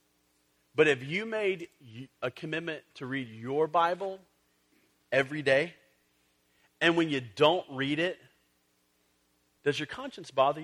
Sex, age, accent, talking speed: male, 40-59, American, 125 wpm